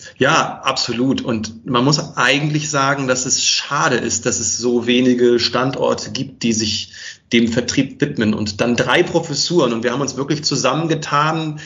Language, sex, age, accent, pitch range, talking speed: German, male, 30-49, German, 125-155 Hz, 165 wpm